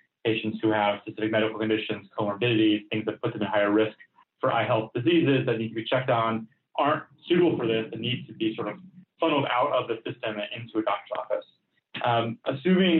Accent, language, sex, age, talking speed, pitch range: American, English, male, 30-49, 210 wpm, 110-135 Hz